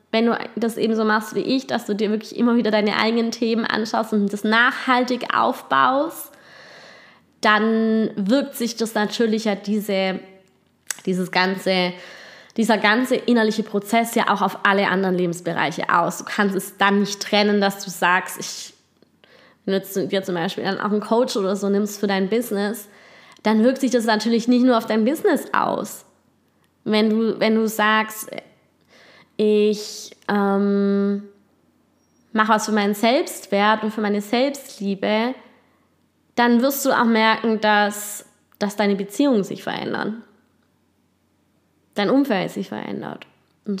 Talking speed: 150 wpm